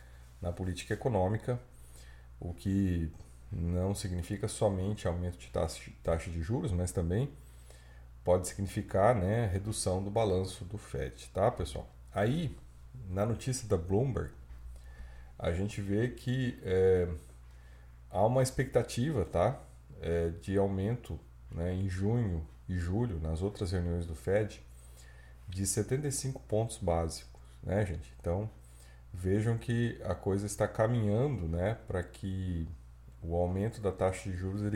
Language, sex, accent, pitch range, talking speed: Portuguese, male, Brazilian, 80-110 Hz, 130 wpm